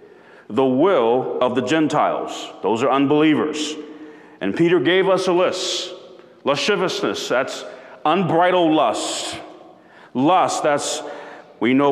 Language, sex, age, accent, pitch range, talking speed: English, male, 40-59, American, 150-225 Hz, 110 wpm